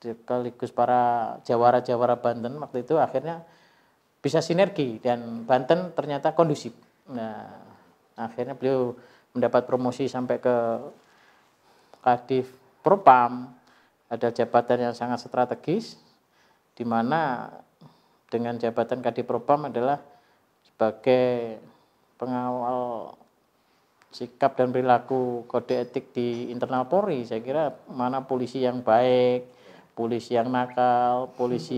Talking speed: 100 wpm